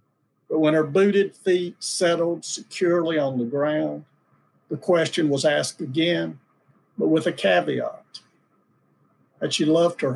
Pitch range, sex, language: 150-180 Hz, male, English